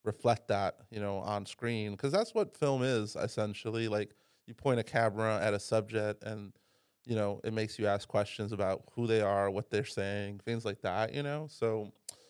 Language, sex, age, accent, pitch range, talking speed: English, male, 20-39, American, 105-120 Hz, 200 wpm